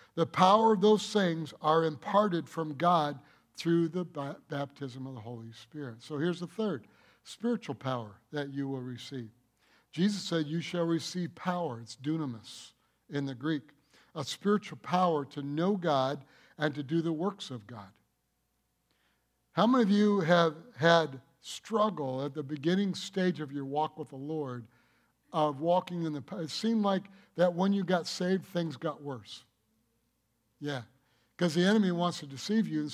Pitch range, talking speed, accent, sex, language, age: 135-180 Hz, 165 wpm, American, male, English, 60-79